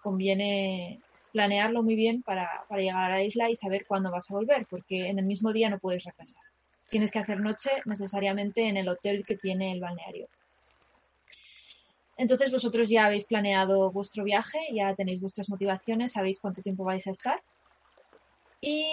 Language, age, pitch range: Spanish, 20-39, 195-230 Hz